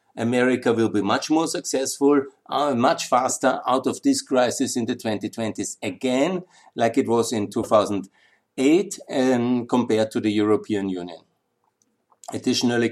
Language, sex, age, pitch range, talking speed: German, male, 60-79, 110-140 Hz, 130 wpm